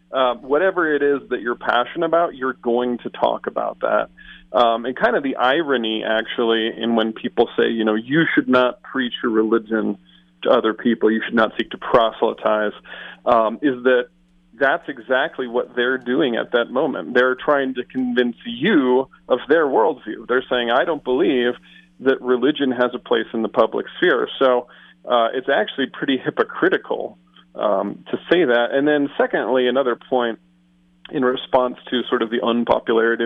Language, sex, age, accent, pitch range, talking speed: English, male, 40-59, American, 115-135 Hz, 175 wpm